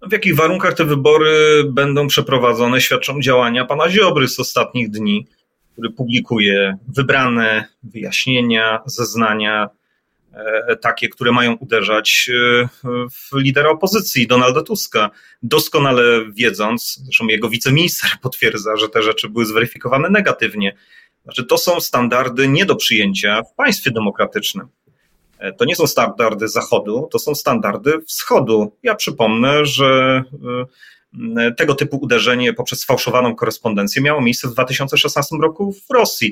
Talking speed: 120 wpm